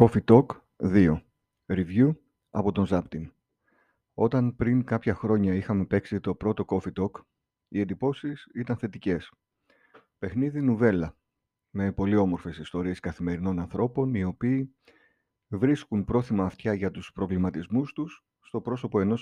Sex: male